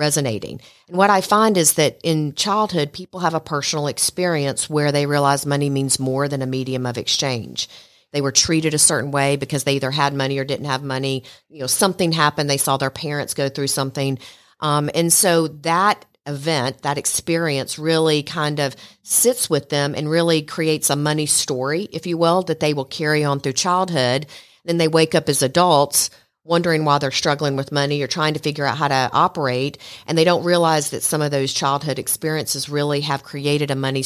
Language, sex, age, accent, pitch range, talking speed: English, female, 40-59, American, 135-165 Hz, 205 wpm